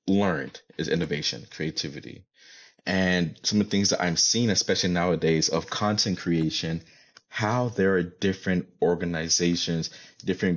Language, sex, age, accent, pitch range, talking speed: English, male, 30-49, American, 85-95 Hz, 130 wpm